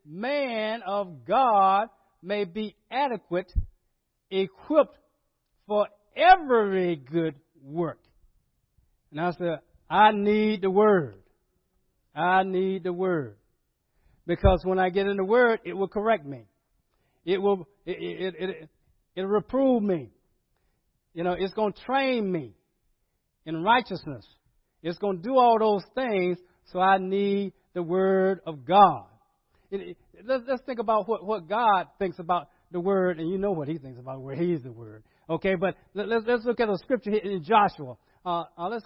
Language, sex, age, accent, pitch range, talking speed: English, male, 60-79, American, 160-200 Hz, 160 wpm